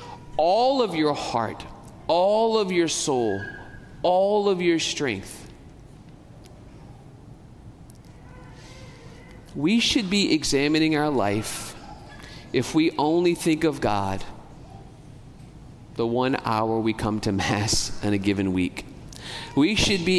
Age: 40-59